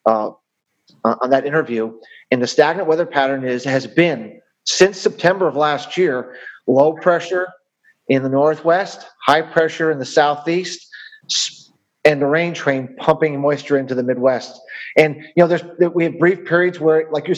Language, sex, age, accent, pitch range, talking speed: English, male, 40-59, American, 155-190 Hz, 160 wpm